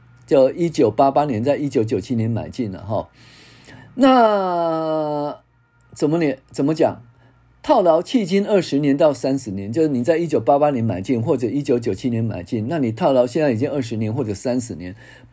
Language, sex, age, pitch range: Chinese, male, 50-69, 120-165 Hz